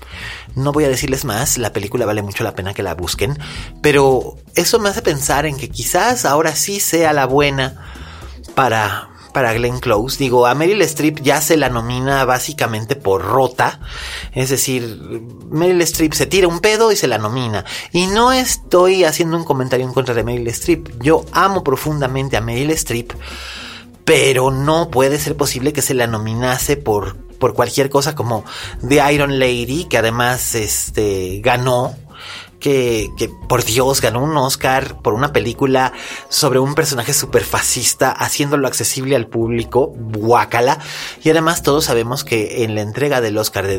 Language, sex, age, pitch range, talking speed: Spanish, male, 30-49, 115-145 Hz, 170 wpm